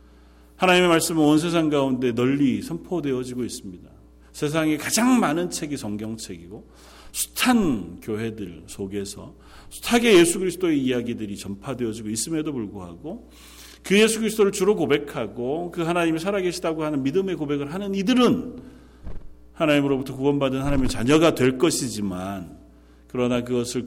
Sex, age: male, 40-59